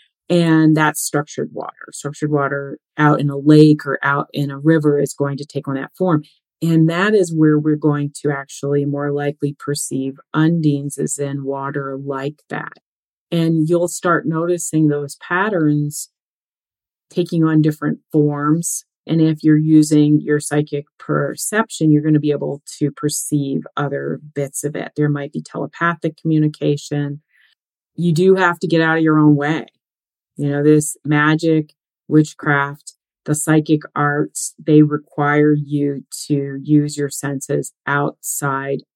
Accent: American